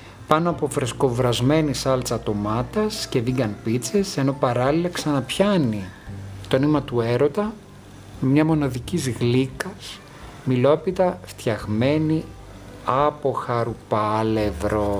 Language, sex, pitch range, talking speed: Greek, male, 100-150 Hz, 90 wpm